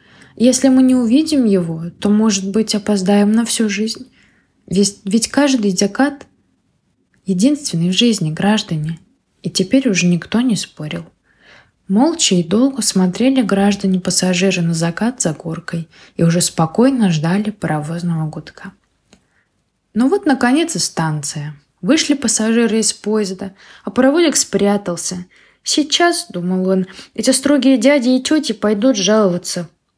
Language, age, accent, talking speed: Ukrainian, 20-39, native, 130 wpm